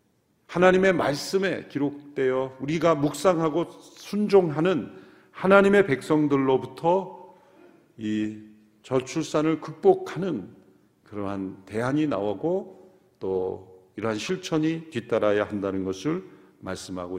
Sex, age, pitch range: male, 50-69, 115-175 Hz